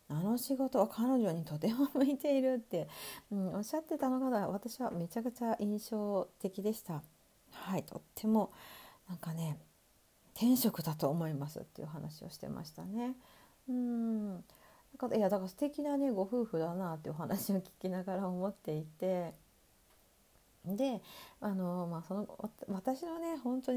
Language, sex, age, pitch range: Japanese, female, 40-59, 170-235 Hz